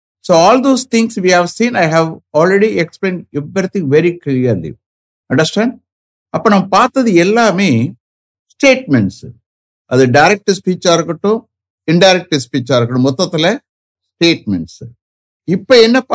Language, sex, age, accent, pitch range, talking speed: English, male, 60-79, Indian, 120-195 Hz, 120 wpm